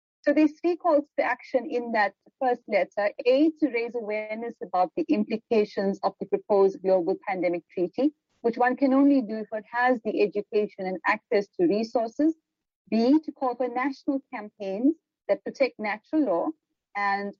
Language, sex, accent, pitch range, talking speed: English, female, Indian, 200-275 Hz, 165 wpm